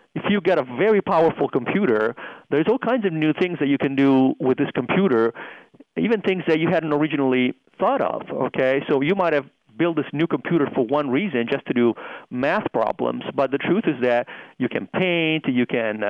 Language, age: English, 40-59